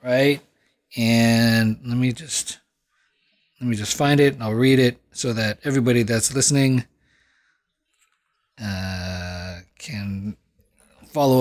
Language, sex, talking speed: English, male, 115 wpm